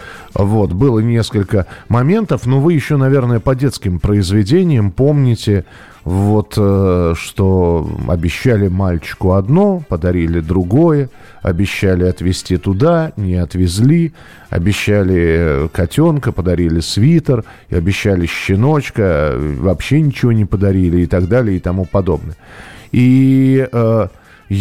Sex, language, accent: male, Russian, native